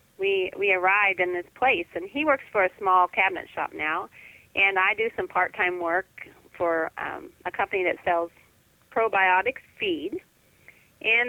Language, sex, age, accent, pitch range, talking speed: English, female, 30-49, American, 185-270 Hz, 160 wpm